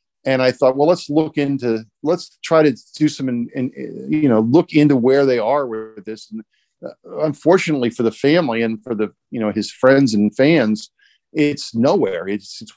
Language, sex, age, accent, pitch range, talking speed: English, male, 40-59, American, 120-150 Hz, 190 wpm